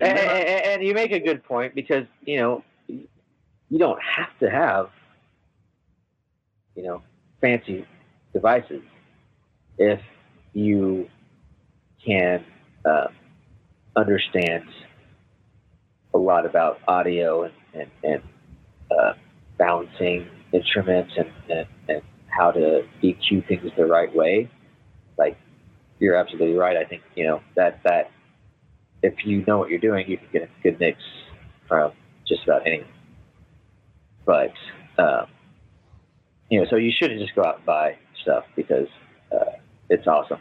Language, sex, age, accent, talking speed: English, male, 40-59, American, 130 wpm